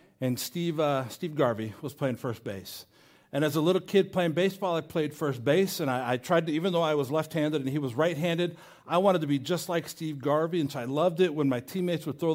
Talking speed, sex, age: 255 wpm, male, 50-69